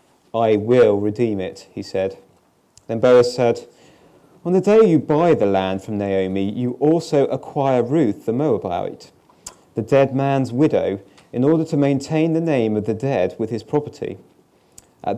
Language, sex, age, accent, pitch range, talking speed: English, male, 30-49, British, 105-135 Hz, 160 wpm